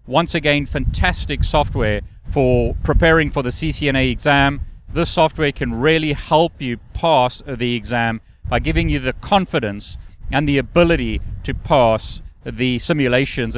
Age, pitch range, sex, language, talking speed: 30-49, 120-160 Hz, male, English, 135 wpm